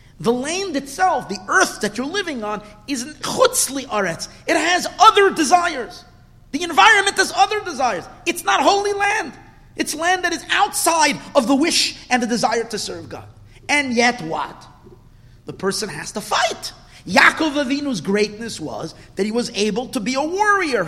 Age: 40-59